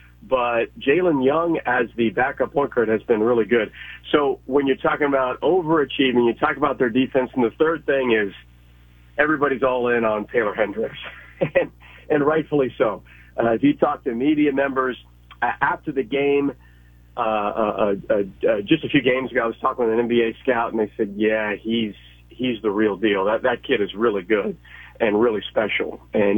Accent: American